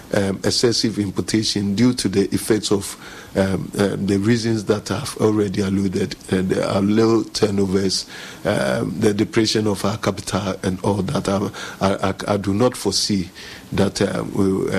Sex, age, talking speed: male, 50-69, 155 wpm